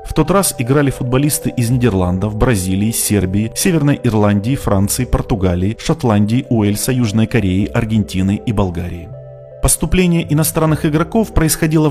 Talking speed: 120 wpm